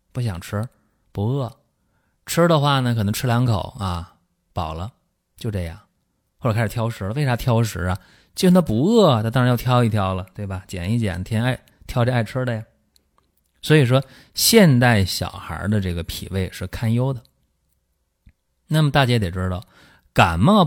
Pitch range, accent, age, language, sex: 95-125 Hz, native, 30-49, Chinese, male